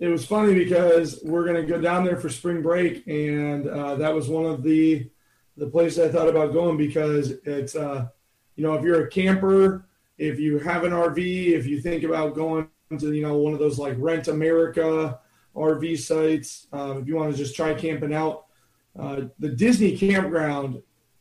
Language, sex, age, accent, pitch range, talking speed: English, male, 30-49, American, 145-170 Hz, 195 wpm